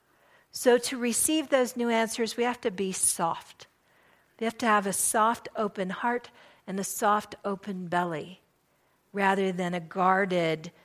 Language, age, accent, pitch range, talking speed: English, 50-69, American, 190-240 Hz, 155 wpm